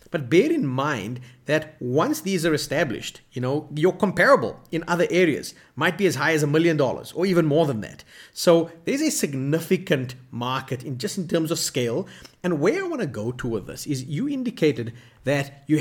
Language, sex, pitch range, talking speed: English, male, 135-170 Hz, 205 wpm